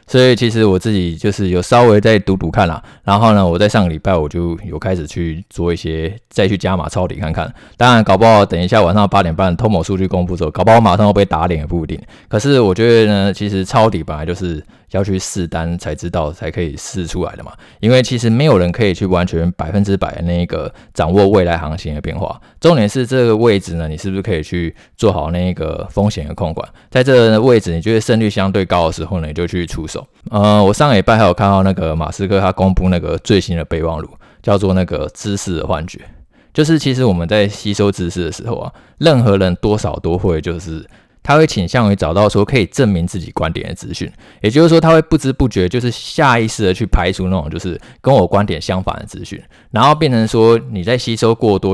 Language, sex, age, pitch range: Chinese, male, 20-39, 90-115 Hz